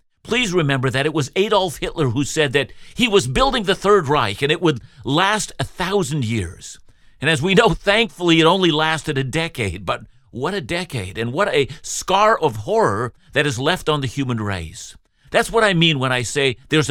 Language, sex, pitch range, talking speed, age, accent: English, male, 120-170 Hz, 205 wpm, 50-69, American